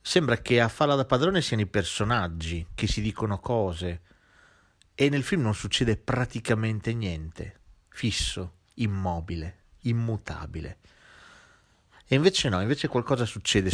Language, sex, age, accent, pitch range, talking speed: Italian, male, 40-59, native, 90-120 Hz, 125 wpm